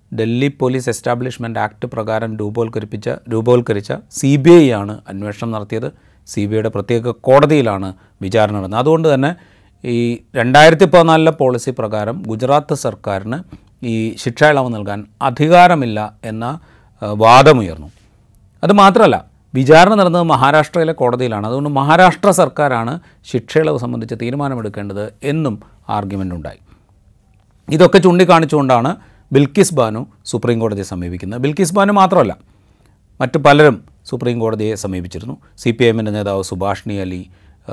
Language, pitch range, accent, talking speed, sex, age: Malayalam, 105-150 Hz, native, 85 wpm, male, 30-49